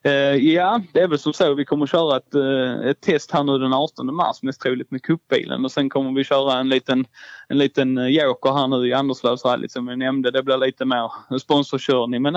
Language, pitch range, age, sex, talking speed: Swedish, 130-150 Hz, 20-39, male, 245 wpm